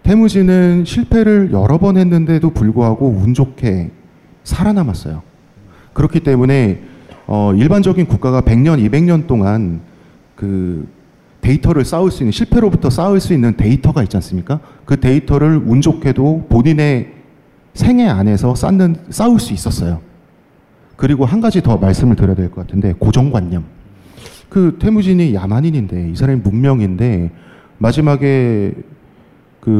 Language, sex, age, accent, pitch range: Korean, male, 40-59, native, 105-155 Hz